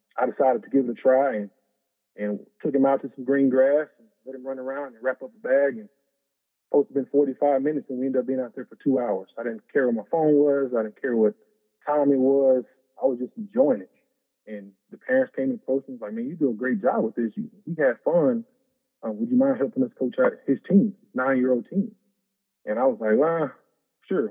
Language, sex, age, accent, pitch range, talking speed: English, male, 20-39, American, 130-210 Hz, 250 wpm